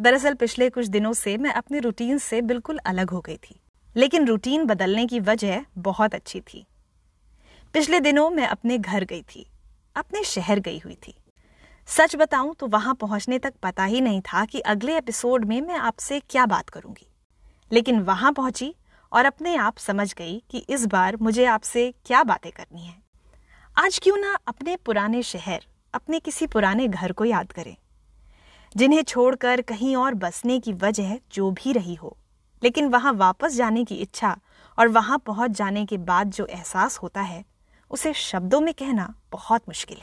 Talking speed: 175 wpm